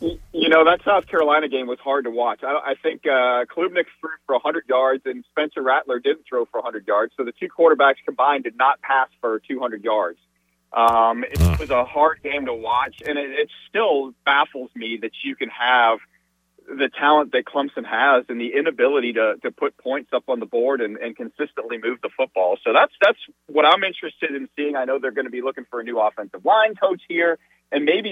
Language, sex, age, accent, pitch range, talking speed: English, male, 40-59, American, 130-200 Hz, 220 wpm